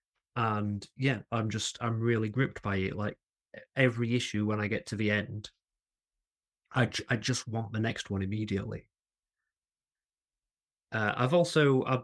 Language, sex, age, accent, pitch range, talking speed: English, male, 30-49, British, 100-115 Hz, 150 wpm